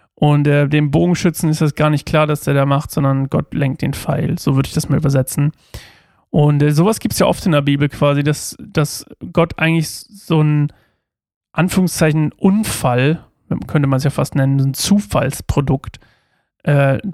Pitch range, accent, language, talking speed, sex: 145-175 Hz, German, German, 185 wpm, male